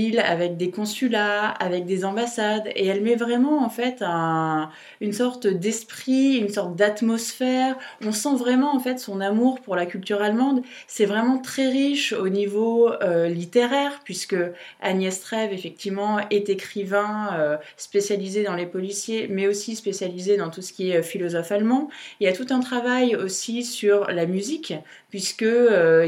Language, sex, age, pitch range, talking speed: French, female, 20-39, 195-240 Hz, 165 wpm